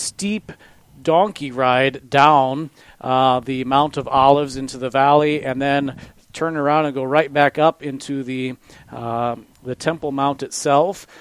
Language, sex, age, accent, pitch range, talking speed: English, male, 40-59, American, 130-155 Hz, 150 wpm